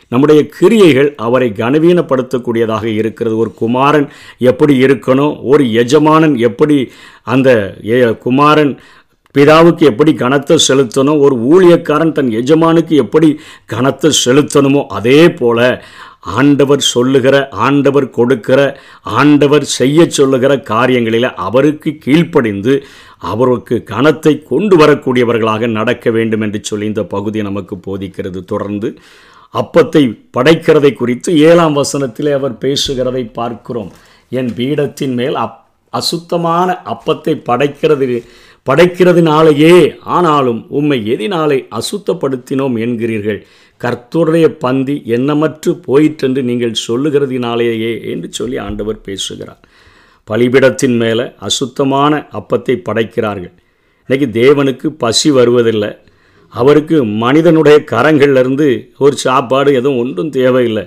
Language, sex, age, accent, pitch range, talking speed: Tamil, male, 50-69, native, 115-150 Hz, 95 wpm